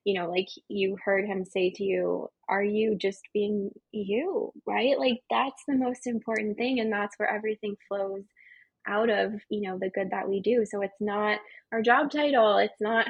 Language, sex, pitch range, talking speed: English, female, 200-235 Hz, 195 wpm